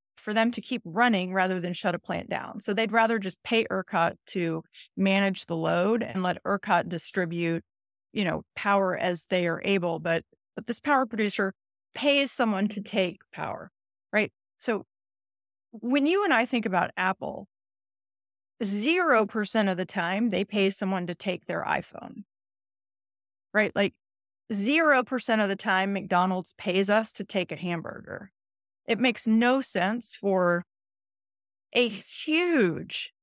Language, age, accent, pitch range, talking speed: English, 30-49, American, 175-215 Hz, 150 wpm